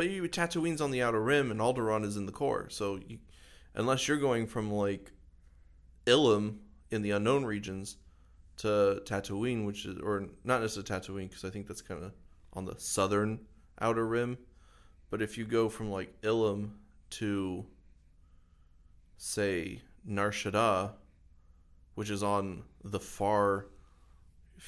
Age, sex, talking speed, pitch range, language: 20-39, male, 140 wpm, 80-105 Hz, English